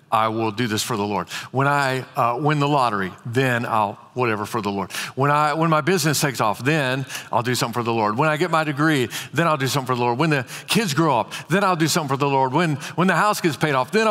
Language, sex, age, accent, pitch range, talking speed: English, male, 50-69, American, 125-155 Hz, 275 wpm